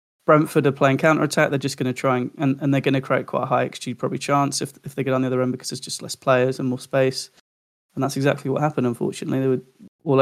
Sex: male